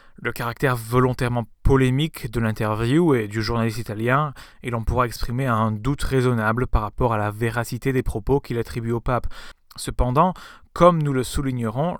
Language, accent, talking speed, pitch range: French, French, 165 wpm, 115-145 Hz